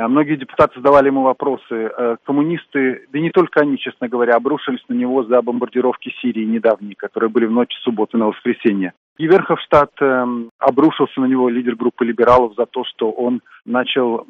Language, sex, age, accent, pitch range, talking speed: Russian, male, 40-59, native, 120-135 Hz, 165 wpm